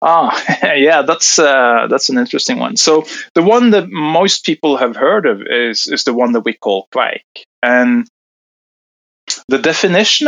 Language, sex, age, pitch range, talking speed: English, male, 30-49, 115-165 Hz, 170 wpm